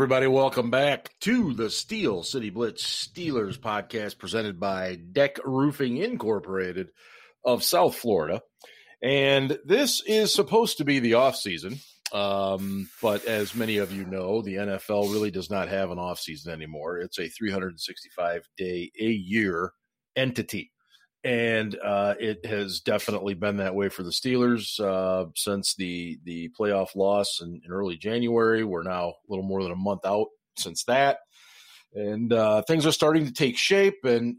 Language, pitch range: English, 95-125 Hz